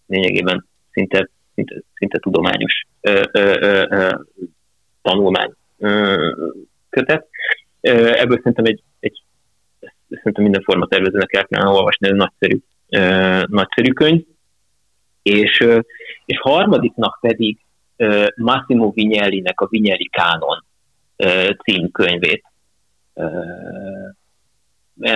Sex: male